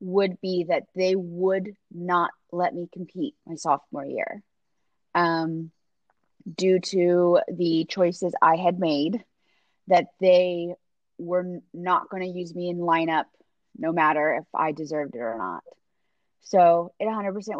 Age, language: 20-39, English